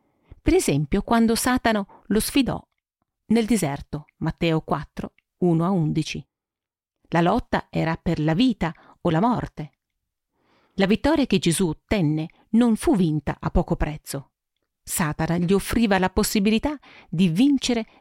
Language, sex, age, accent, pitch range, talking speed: Italian, female, 40-59, native, 165-230 Hz, 135 wpm